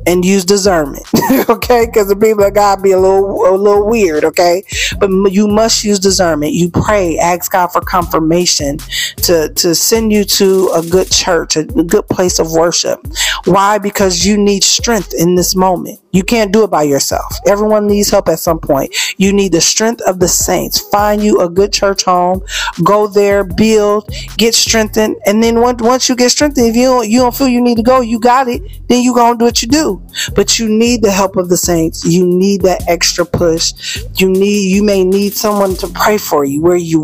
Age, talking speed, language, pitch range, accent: 40-59, 210 wpm, English, 175-210 Hz, American